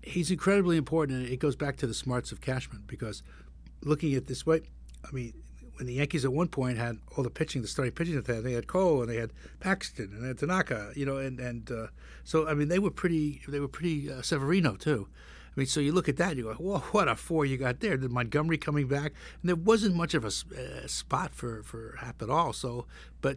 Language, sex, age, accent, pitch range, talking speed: English, male, 60-79, American, 110-145 Hz, 255 wpm